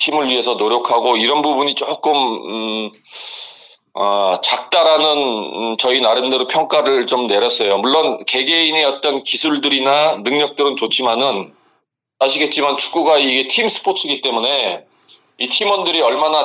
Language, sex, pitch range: Korean, male, 115-155 Hz